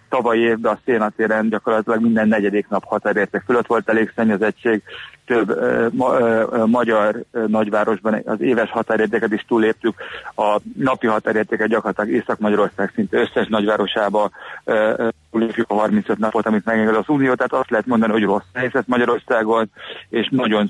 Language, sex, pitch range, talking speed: Hungarian, male, 105-115 Hz, 150 wpm